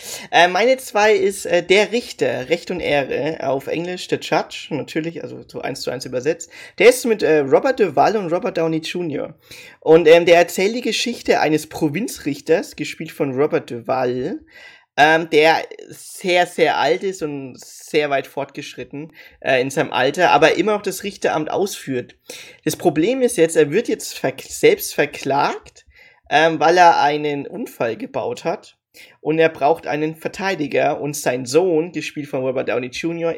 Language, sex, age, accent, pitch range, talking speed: German, male, 20-39, German, 145-185 Hz, 165 wpm